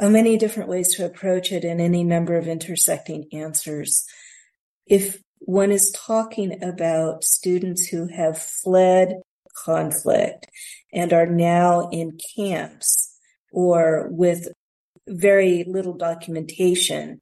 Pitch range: 170-200 Hz